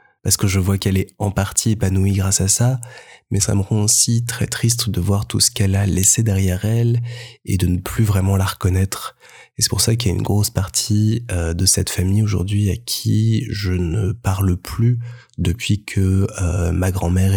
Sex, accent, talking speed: male, French, 205 wpm